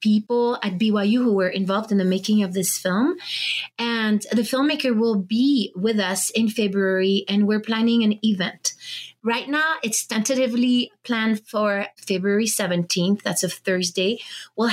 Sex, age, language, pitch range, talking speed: female, 30-49, English, 200-240 Hz, 155 wpm